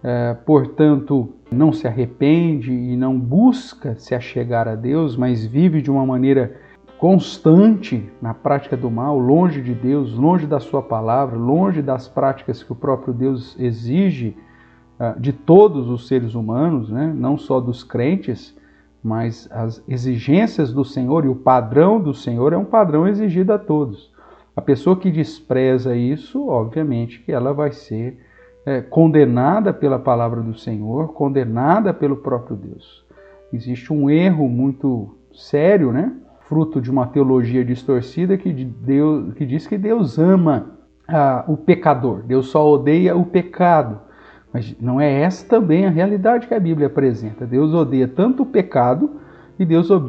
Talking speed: 150 wpm